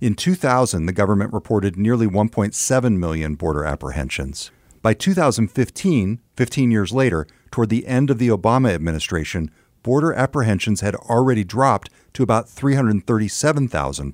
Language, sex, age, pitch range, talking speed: English, male, 50-69, 90-130 Hz, 125 wpm